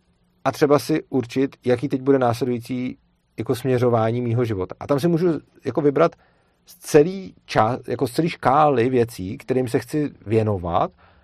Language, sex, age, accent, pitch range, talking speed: Czech, male, 40-59, native, 115-145 Hz, 145 wpm